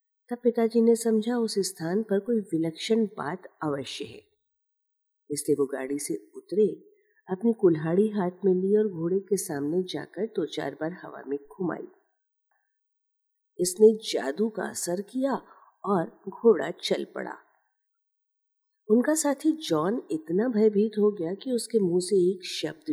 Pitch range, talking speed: 165-240 Hz, 145 wpm